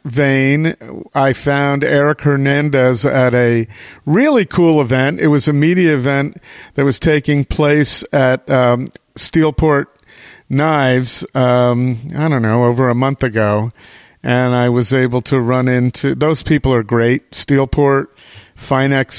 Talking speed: 135 wpm